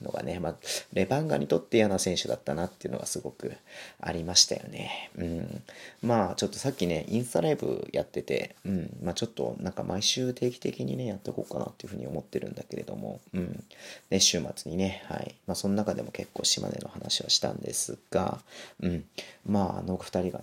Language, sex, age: Japanese, male, 40-59